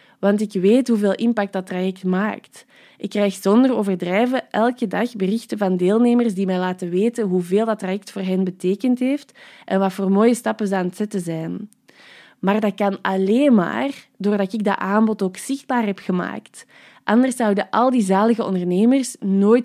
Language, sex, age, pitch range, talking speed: Dutch, female, 20-39, 190-235 Hz, 175 wpm